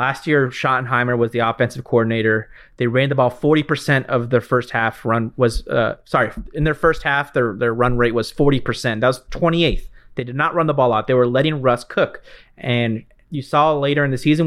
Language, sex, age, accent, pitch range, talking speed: English, male, 30-49, American, 120-150 Hz, 215 wpm